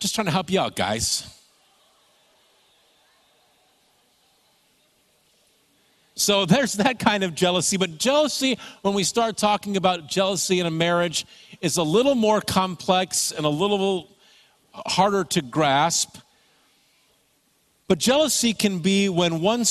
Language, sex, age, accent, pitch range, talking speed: English, male, 50-69, American, 160-210 Hz, 125 wpm